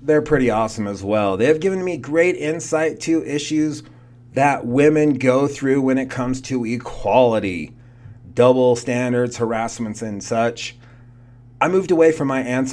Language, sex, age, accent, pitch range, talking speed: English, male, 30-49, American, 120-150 Hz, 155 wpm